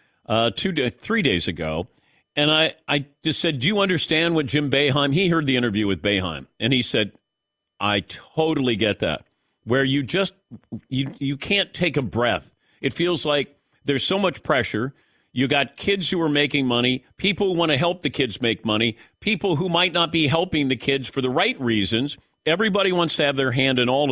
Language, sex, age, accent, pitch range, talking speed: English, male, 50-69, American, 120-165 Hz, 200 wpm